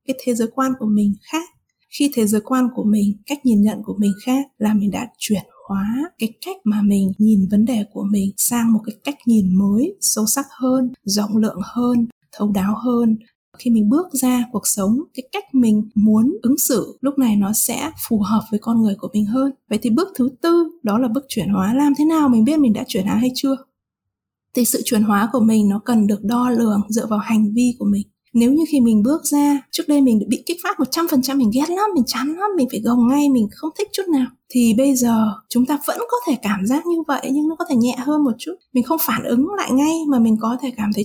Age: 20-39